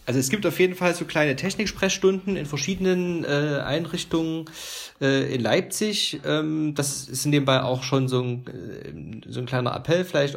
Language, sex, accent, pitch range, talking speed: German, male, German, 115-145 Hz, 175 wpm